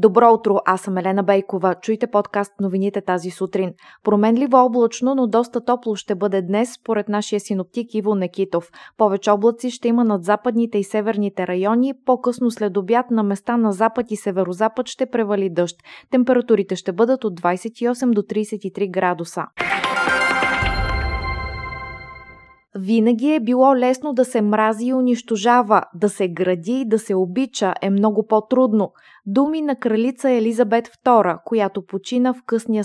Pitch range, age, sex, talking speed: 195-240 Hz, 20-39, female, 150 wpm